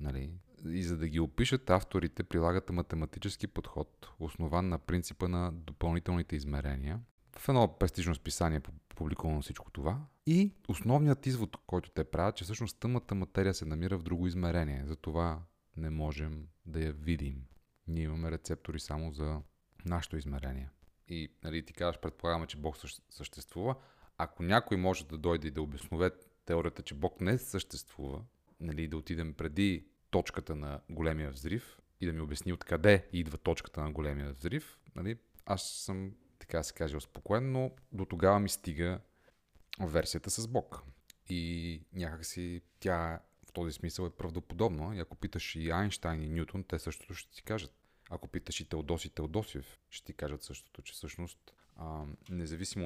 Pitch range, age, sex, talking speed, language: 80-95 Hz, 30-49, male, 160 wpm, Bulgarian